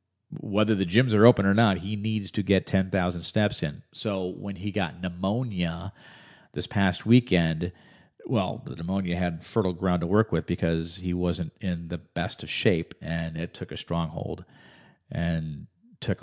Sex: male